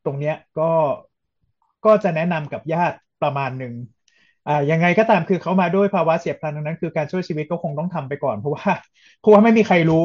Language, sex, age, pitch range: Thai, male, 20-39, 140-175 Hz